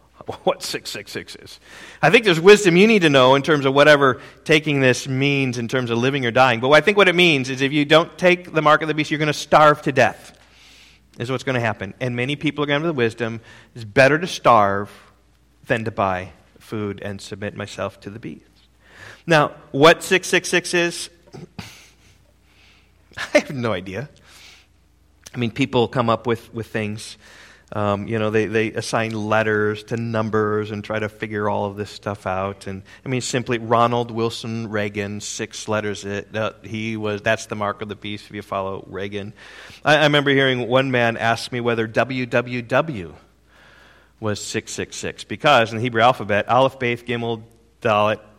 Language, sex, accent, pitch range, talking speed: English, male, American, 105-135 Hz, 190 wpm